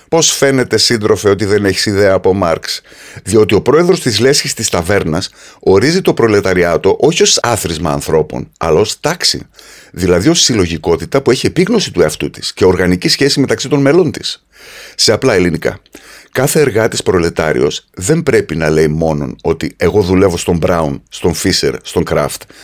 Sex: male